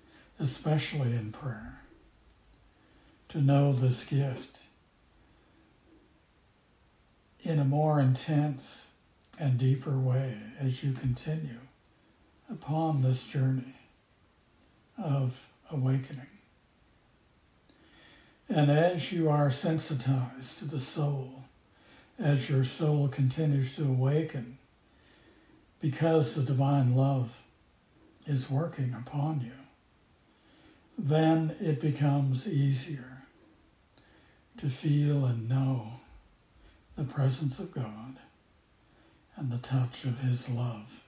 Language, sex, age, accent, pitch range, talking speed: English, male, 60-79, American, 130-145 Hz, 90 wpm